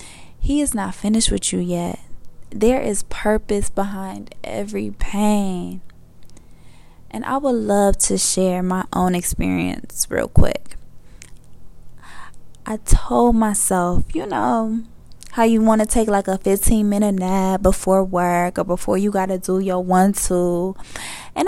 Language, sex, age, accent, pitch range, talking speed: English, female, 10-29, American, 190-255 Hz, 140 wpm